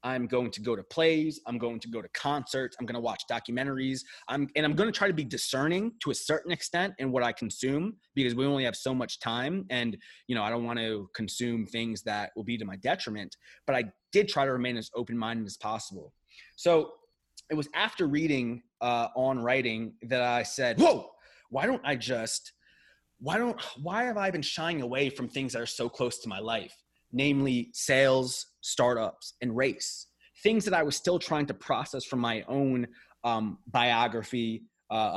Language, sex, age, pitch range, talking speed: English, male, 20-39, 115-145 Hz, 200 wpm